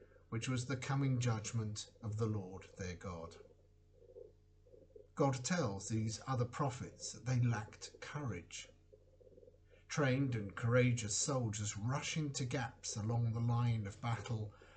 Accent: British